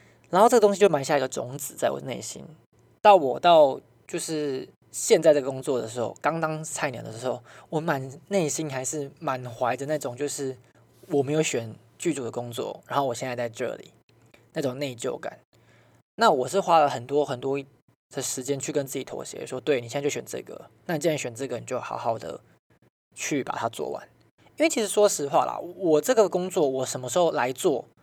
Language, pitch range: Chinese, 130-175 Hz